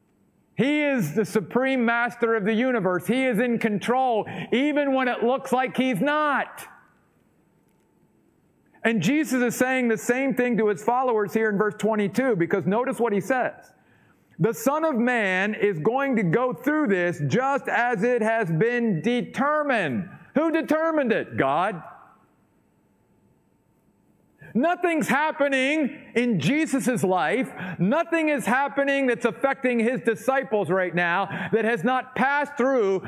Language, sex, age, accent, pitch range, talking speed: English, male, 50-69, American, 195-260 Hz, 140 wpm